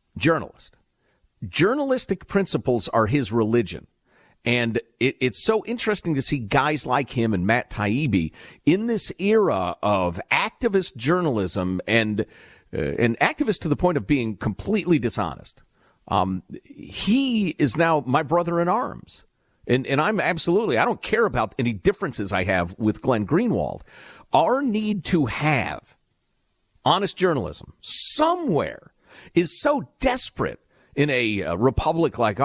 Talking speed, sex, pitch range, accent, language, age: 135 wpm, male, 100-165 Hz, American, English, 50-69